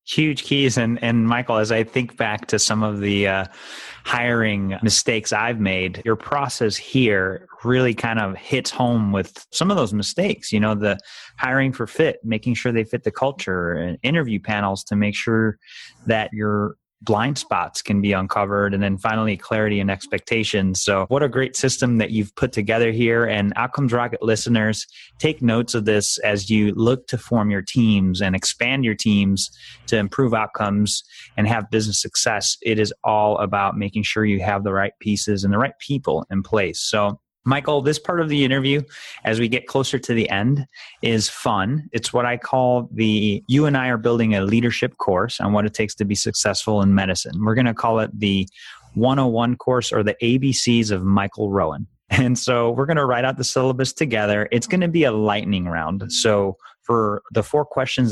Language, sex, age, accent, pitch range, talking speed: English, male, 30-49, American, 105-125 Hz, 195 wpm